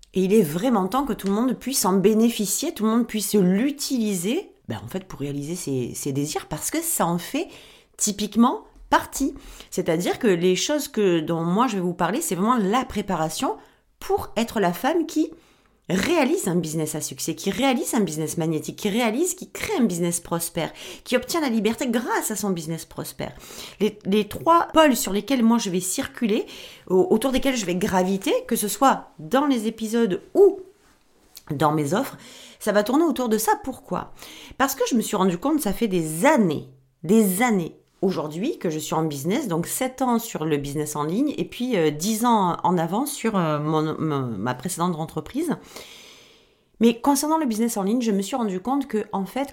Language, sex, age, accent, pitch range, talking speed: French, female, 40-59, French, 165-250 Hz, 195 wpm